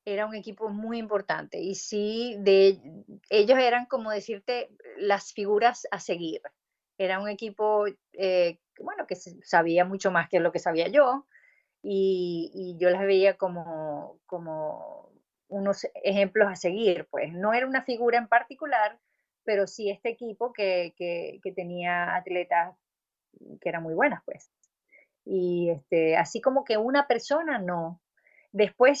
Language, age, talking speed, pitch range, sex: Spanish, 30-49, 145 wpm, 180-220 Hz, female